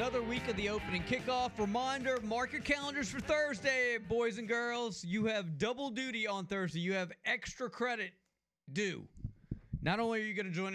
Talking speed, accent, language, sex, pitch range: 185 wpm, American, English, male, 155-225 Hz